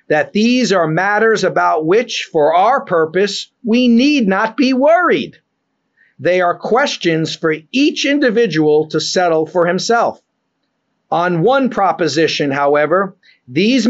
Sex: male